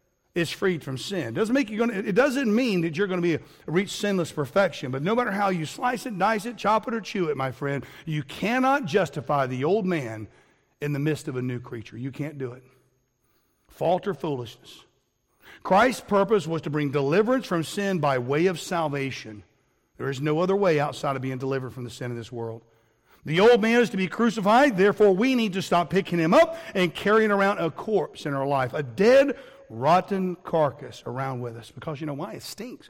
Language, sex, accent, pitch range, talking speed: English, male, American, 130-185 Hz, 220 wpm